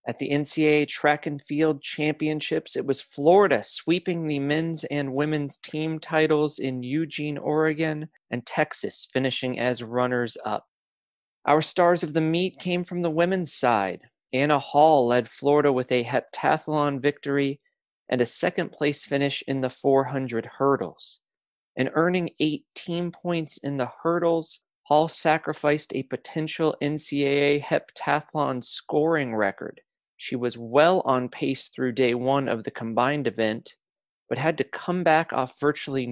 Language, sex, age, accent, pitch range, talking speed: English, male, 40-59, American, 130-155 Hz, 140 wpm